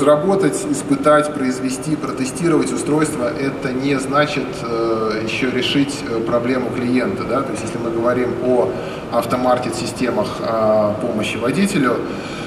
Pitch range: 115-145 Hz